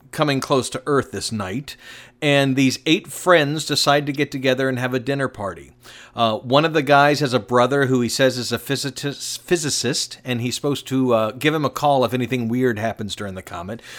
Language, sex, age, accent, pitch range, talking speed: English, male, 50-69, American, 120-150 Hz, 210 wpm